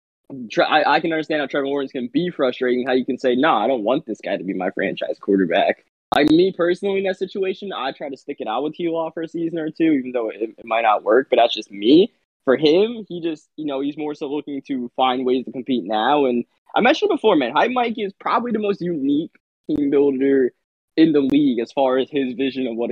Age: 20-39